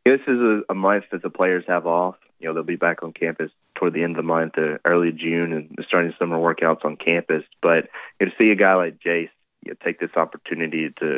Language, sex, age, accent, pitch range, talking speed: English, male, 20-39, American, 80-90 Hz, 240 wpm